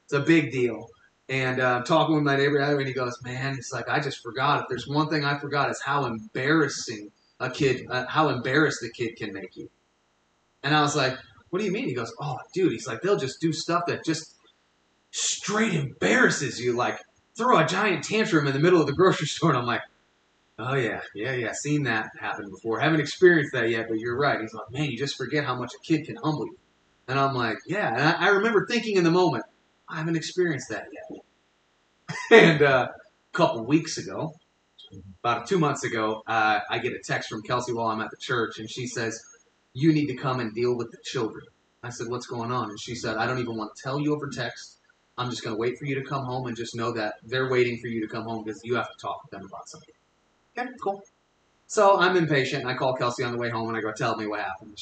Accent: American